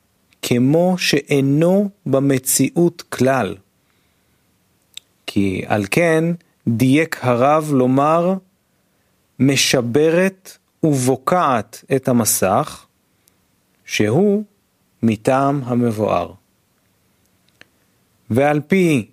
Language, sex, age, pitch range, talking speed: Hebrew, male, 40-59, 110-165 Hz, 60 wpm